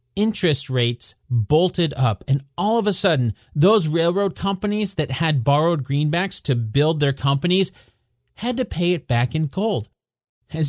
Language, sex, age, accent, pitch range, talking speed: English, male, 40-59, American, 120-175 Hz, 155 wpm